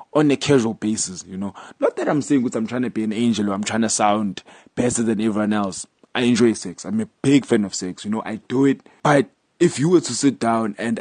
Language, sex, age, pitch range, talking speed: English, male, 20-39, 110-135 Hz, 255 wpm